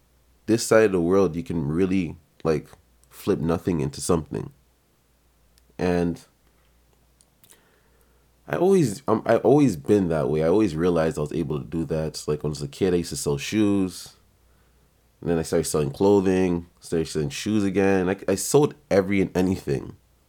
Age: 20-39